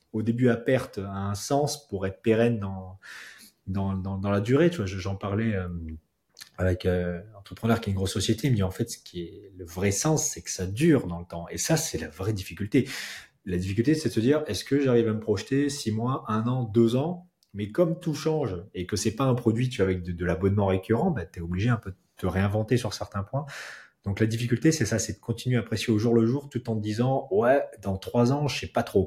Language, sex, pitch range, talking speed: French, male, 90-120 Hz, 260 wpm